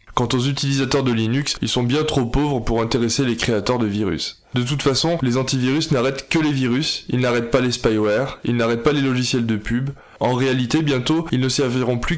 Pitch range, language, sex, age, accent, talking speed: 120-140 Hz, French, male, 20-39, French, 215 wpm